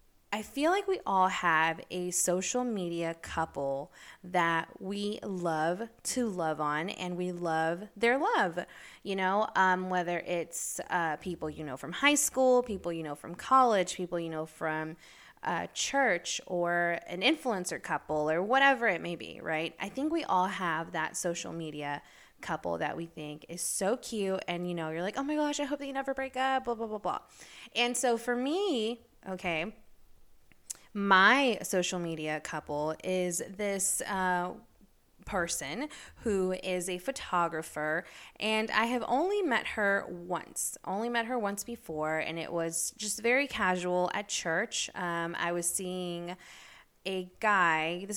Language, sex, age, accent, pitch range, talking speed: English, female, 20-39, American, 165-220 Hz, 165 wpm